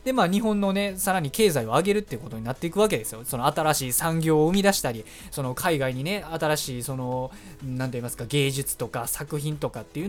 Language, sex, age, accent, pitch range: Japanese, male, 20-39, native, 130-215 Hz